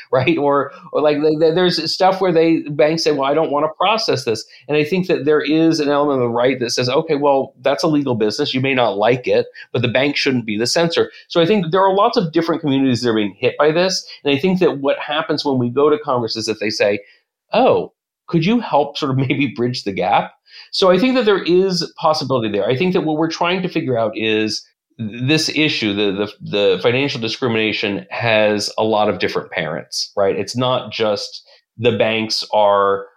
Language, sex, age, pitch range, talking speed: English, male, 40-59, 110-160 Hz, 230 wpm